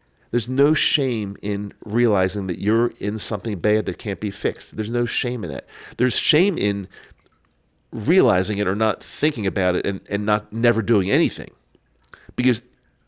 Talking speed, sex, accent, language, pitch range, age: 165 wpm, male, American, English, 85-120 Hz, 50-69